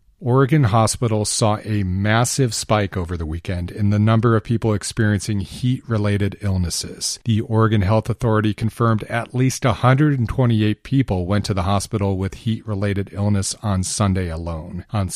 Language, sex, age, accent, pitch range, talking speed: English, male, 40-59, American, 95-115 Hz, 145 wpm